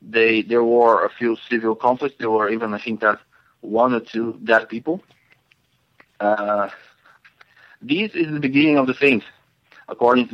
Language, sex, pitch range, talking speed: English, male, 115-135 Hz, 165 wpm